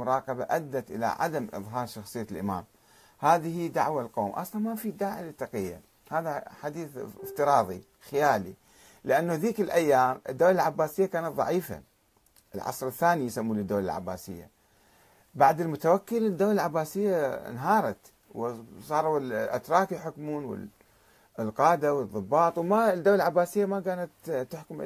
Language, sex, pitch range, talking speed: Arabic, male, 130-190 Hz, 115 wpm